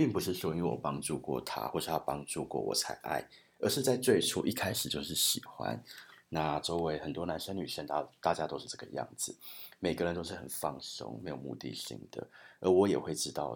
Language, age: Chinese, 30-49